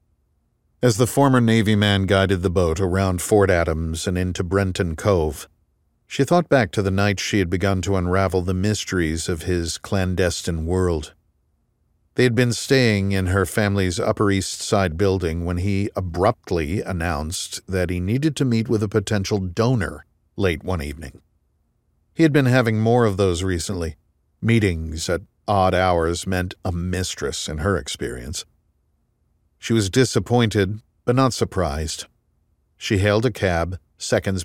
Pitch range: 90-115 Hz